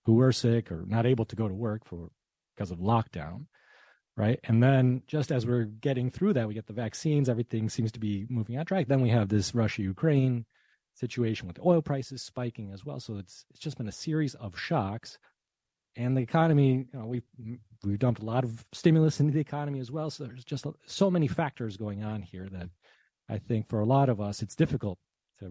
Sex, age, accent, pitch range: male, 30-49, American, 105-135 Hz